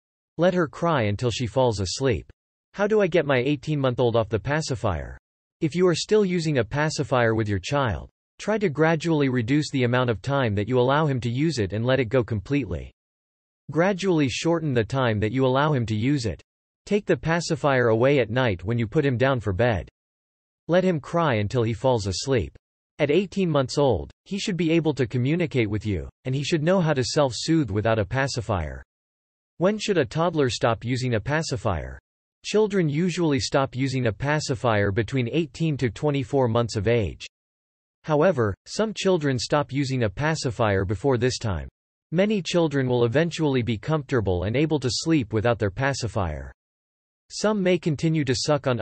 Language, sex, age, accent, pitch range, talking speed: English, male, 40-59, American, 110-155 Hz, 185 wpm